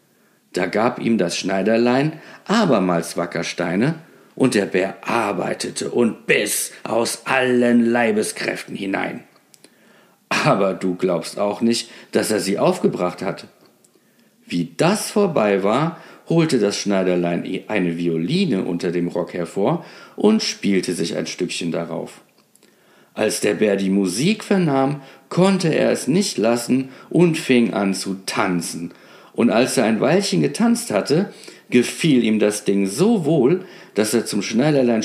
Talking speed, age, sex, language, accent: 135 wpm, 50-69, male, German, German